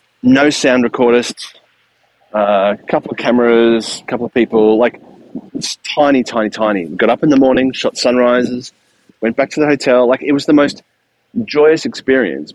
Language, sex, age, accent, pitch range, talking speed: English, male, 30-49, Australian, 105-130 Hz, 165 wpm